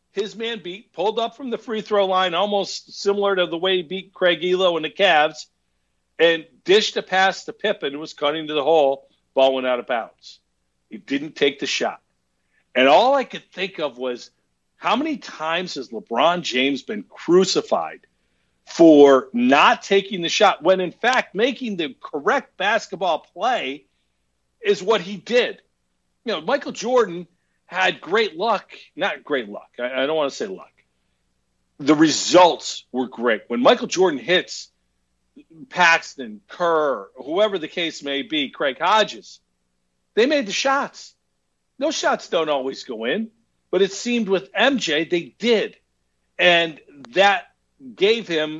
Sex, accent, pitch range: male, American, 130-215 Hz